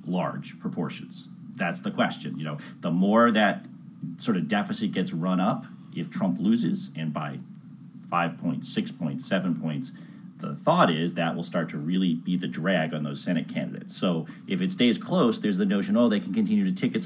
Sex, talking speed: male, 195 wpm